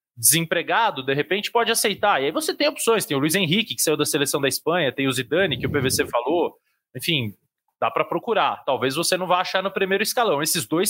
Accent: Brazilian